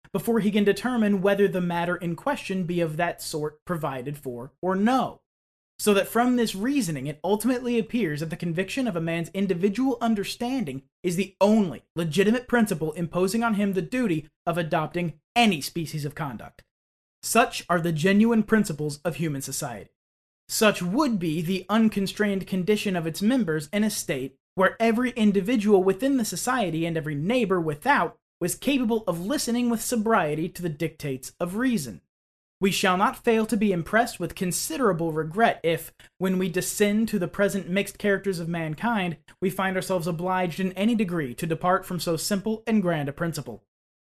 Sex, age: male, 30-49